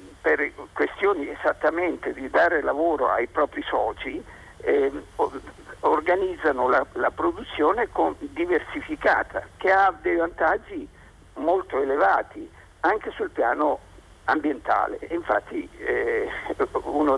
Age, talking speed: 50-69, 100 wpm